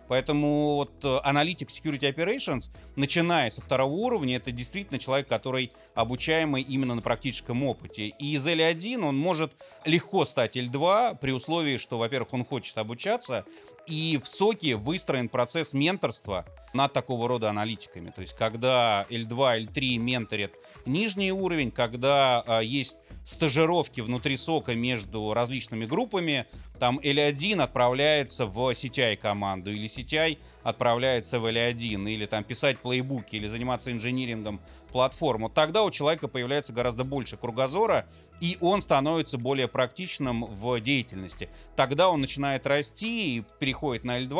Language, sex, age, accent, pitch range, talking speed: Russian, male, 30-49, native, 115-145 Hz, 135 wpm